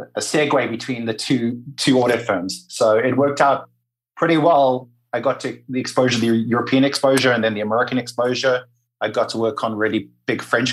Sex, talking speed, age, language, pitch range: male, 195 wpm, 30-49, English, 110-130 Hz